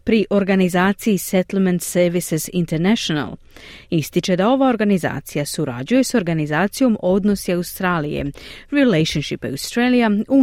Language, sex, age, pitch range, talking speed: Croatian, female, 40-59, 165-245 Hz, 100 wpm